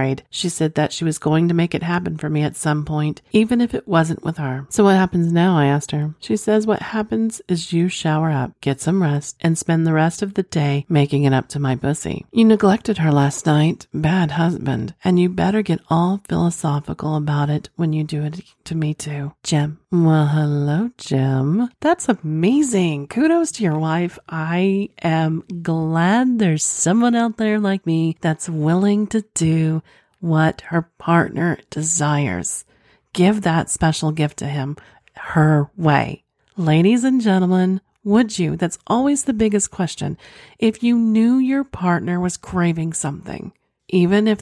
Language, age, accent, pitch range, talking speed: English, 40-59, American, 155-195 Hz, 175 wpm